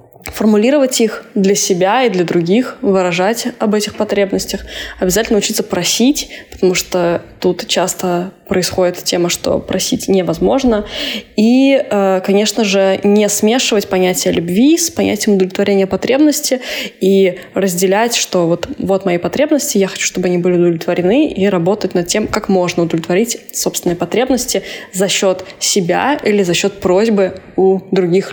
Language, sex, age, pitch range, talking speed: Russian, female, 20-39, 185-215 Hz, 140 wpm